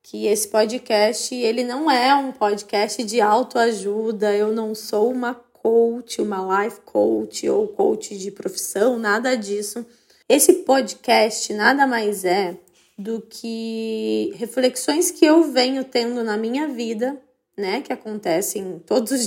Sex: female